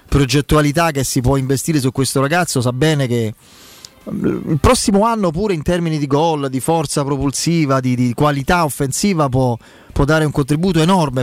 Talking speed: 170 wpm